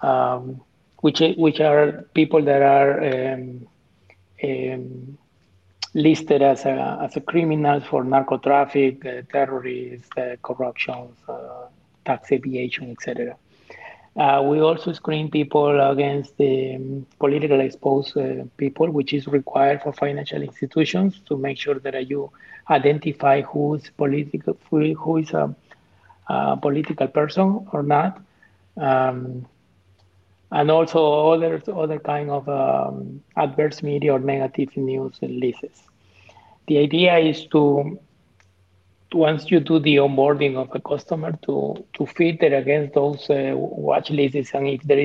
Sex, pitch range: male, 130-150 Hz